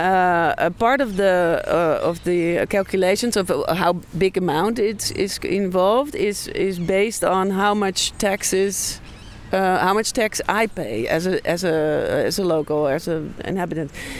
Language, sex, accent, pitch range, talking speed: English, female, Dutch, 170-195 Hz, 165 wpm